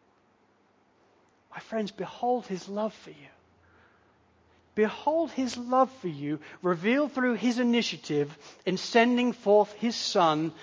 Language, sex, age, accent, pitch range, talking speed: English, male, 40-59, British, 155-215 Hz, 120 wpm